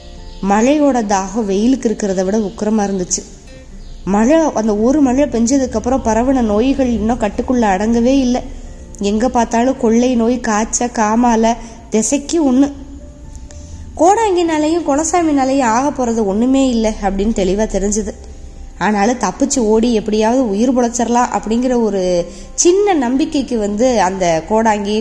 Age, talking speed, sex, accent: 20-39, 115 wpm, female, native